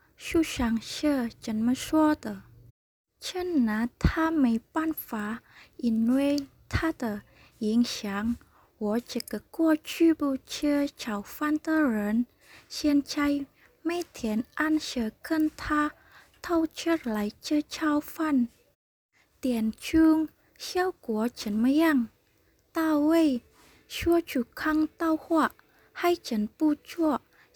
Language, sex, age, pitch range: Indonesian, female, 20-39, 230-315 Hz